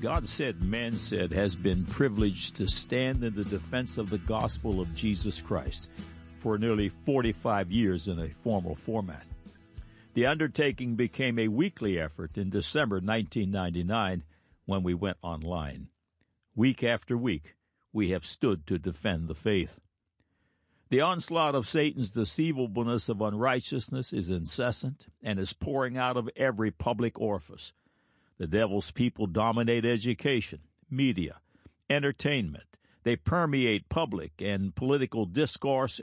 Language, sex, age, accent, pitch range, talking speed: English, male, 60-79, American, 95-130 Hz, 130 wpm